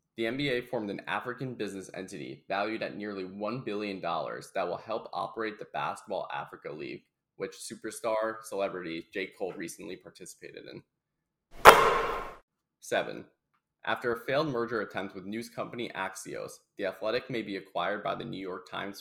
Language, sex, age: English, male, 20-39